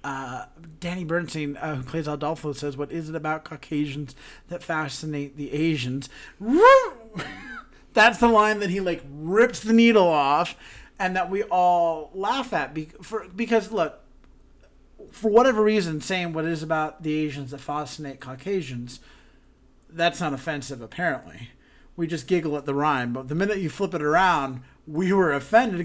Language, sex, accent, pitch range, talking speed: English, male, American, 145-200 Hz, 155 wpm